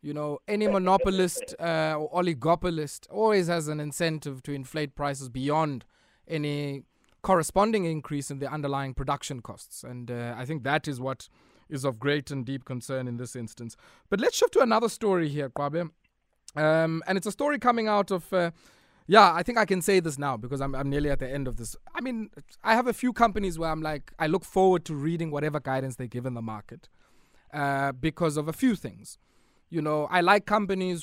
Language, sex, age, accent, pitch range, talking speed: English, male, 20-39, South African, 130-170 Hz, 205 wpm